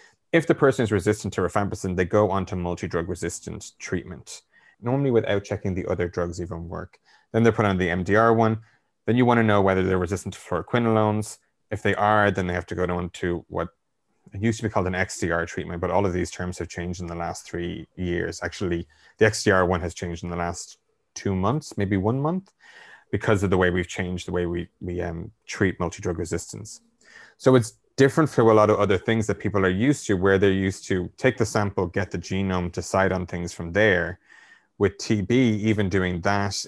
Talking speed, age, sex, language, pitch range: 215 wpm, 30-49, male, English, 90-110 Hz